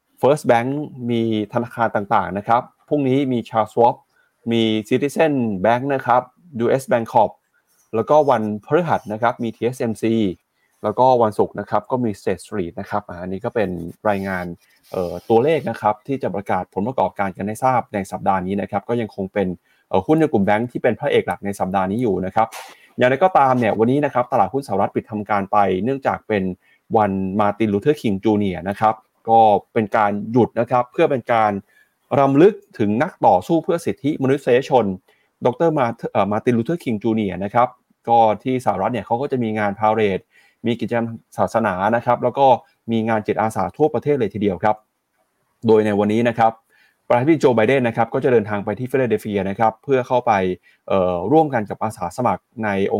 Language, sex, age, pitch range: Thai, male, 20-39, 105-125 Hz